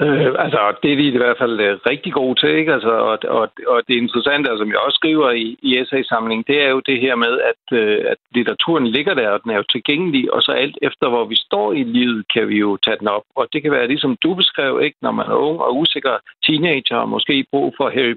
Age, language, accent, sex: 60-79, Danish, native, male